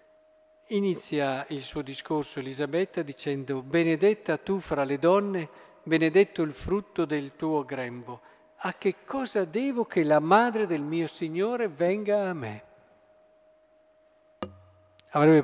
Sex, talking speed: male, 120 wpm